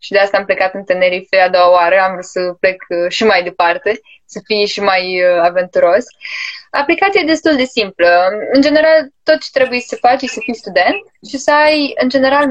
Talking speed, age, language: 205 wpm, 10-29, Romanian